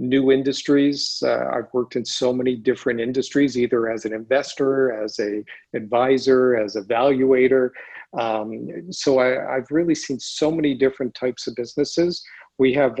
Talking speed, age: 150 wpm, 50-69